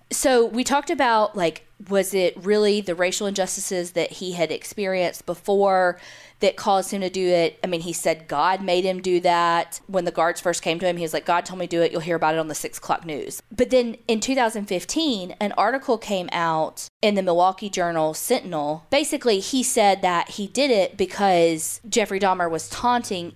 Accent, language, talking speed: American, English, 205 wpm